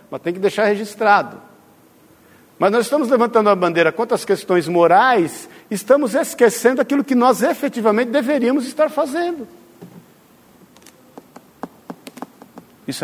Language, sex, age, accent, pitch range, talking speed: Portuguese, male, 50-69, Brazilian, 130-210 Hz, 115 wpm